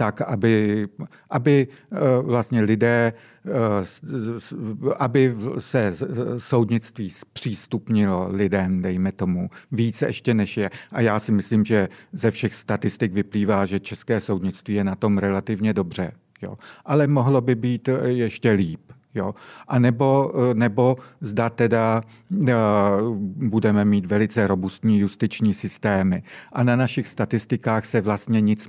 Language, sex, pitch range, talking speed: Czech, male, 105-120 Hz, 125 wpm